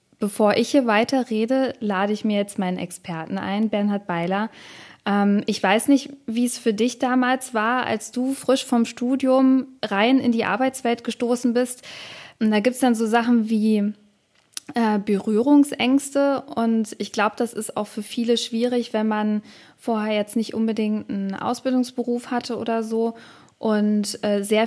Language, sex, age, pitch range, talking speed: German, female, 20-39, 210-250 Hz, 160 wpm